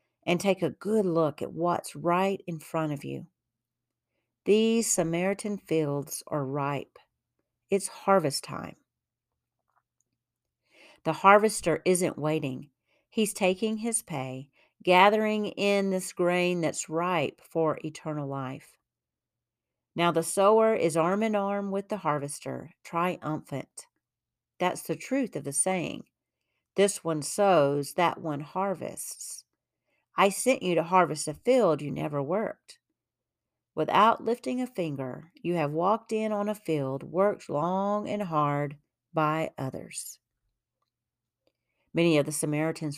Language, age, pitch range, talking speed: English, 50-69, 145-195 Hz, 125 wpm